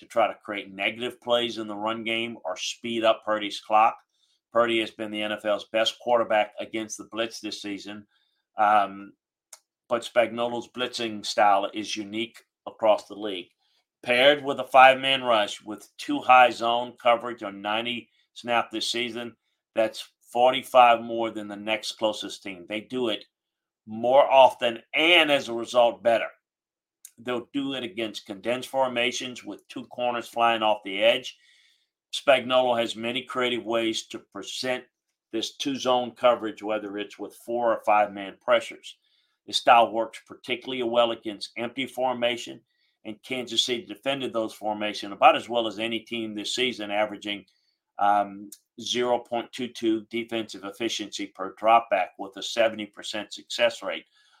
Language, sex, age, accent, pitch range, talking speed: English, male, 40-59, American, 110-125 Hz, 150 wpm